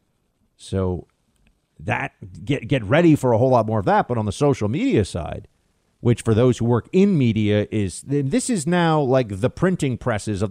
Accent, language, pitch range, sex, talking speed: American, English, 105-140 Hz, male, 195 wpm